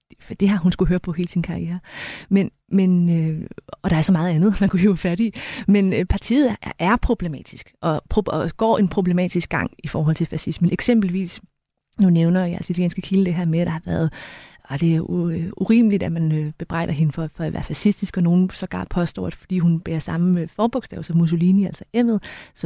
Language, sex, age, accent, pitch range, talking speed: Danish, female, 20-39, native, 165-205 Hz, 215 wpm